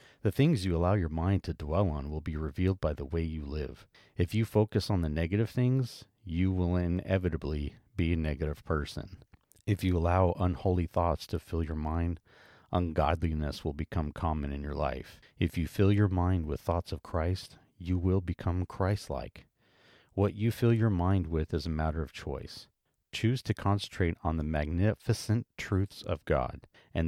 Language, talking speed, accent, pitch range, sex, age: English, 180 wpm, American, 80-95 Hz, male, 40-59